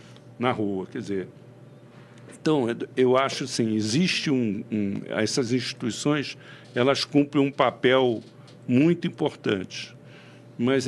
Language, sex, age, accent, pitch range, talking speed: Portuguese, male, 60-79, Brazilian, 115-145 Hz, 110 wpm